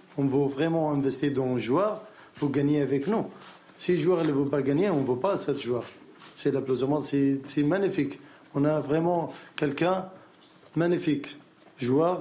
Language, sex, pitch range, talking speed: French, male, 135-150 Hz, 170 wpm